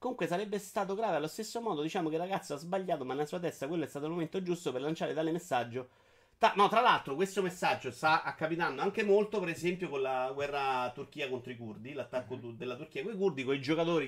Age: 30-49